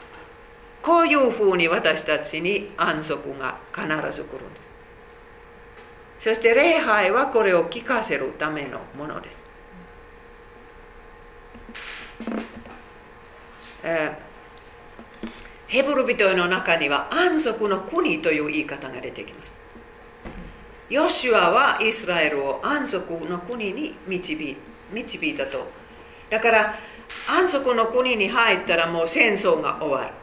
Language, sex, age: Japanese, female, 50-69